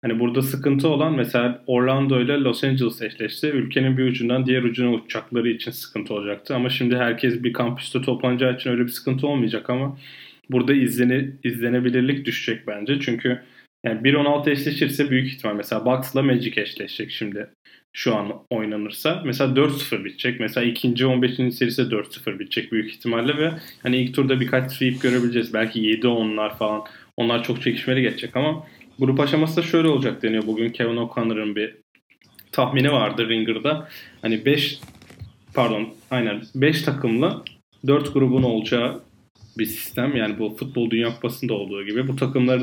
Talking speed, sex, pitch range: 150 wpm, male, 115-135 Hz